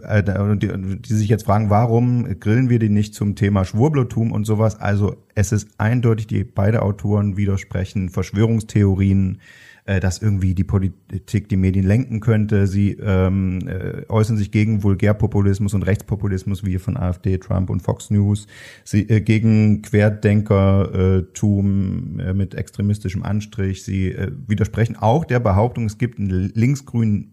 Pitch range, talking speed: 100-115 Hz, 145 wpm